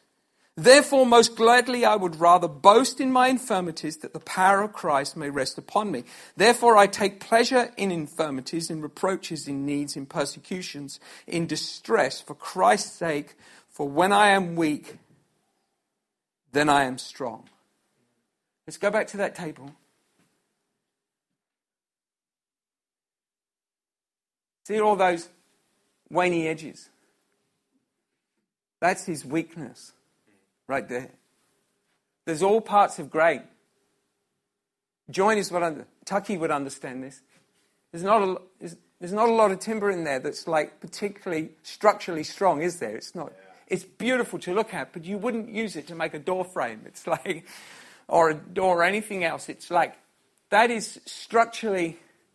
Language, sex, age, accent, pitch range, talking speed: English, male, 50-69, British, 160-210 Hz, 140 wpm